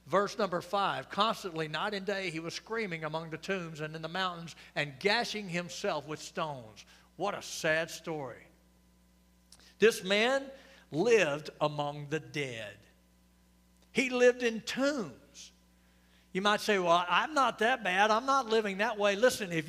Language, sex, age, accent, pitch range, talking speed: English, male, 60-79, American, 155-235 Hz, 155 wpm